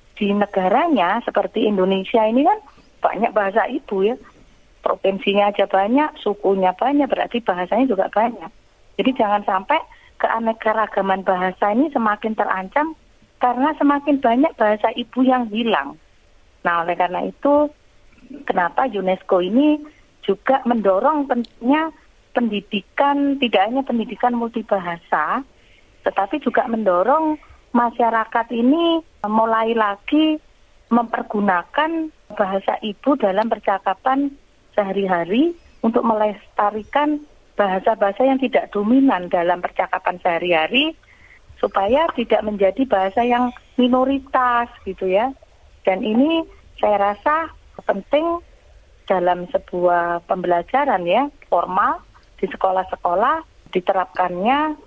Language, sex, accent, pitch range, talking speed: Indonesian, female, native, 195-270 Hz, 100 wpm